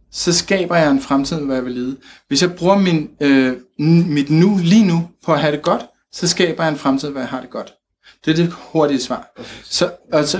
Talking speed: 230 wpm